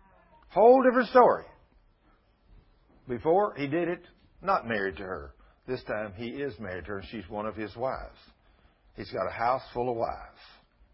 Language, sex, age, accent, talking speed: English, male, 60-79, American, 170 wpm